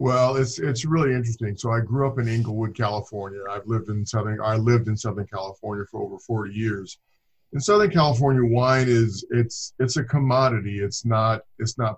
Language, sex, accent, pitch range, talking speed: English, male, American, 105-120 Hz, 190 wpm